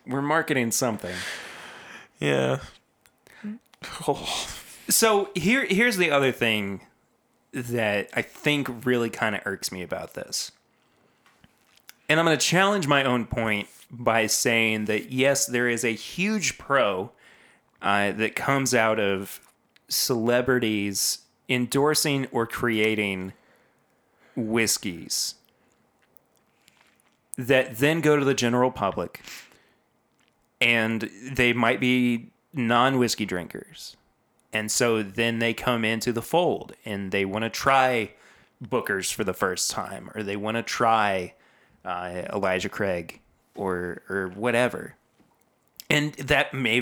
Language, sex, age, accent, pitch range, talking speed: English, male, 30-49, American, 105-130 Hz, 120 wpm